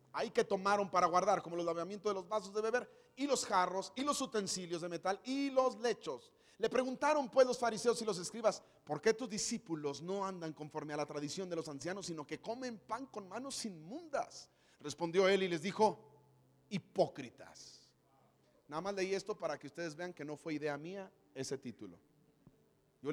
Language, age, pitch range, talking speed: Spanish, 40-59, 135-200 Hz, 190 wpm